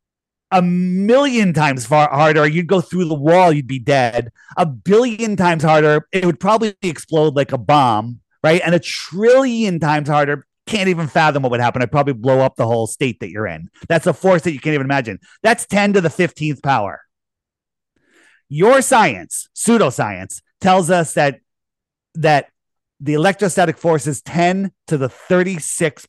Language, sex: English, male